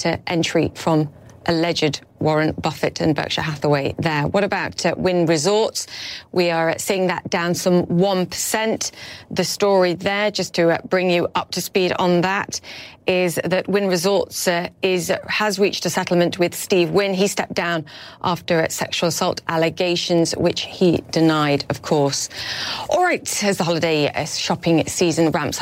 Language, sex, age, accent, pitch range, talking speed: English, female, 30-49, British, 160-195 Hz, 155 wpm